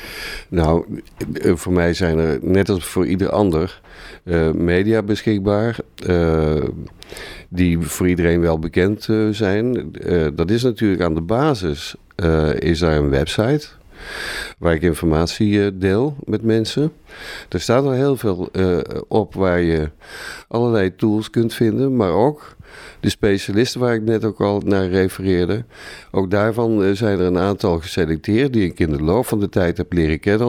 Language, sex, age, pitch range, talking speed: Dutch, male, 50-69, 85-110 Hz, 150 wpm